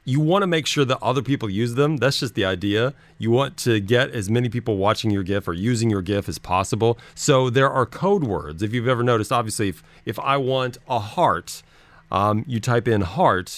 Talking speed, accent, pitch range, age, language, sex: 225 wpm, American, 105-140 Hz, 40-59, English, male